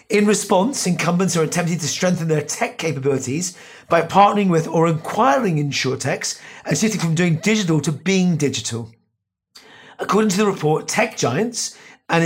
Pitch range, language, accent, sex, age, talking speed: 155-195 Hz, English, British, male, 30-49, 150 wpm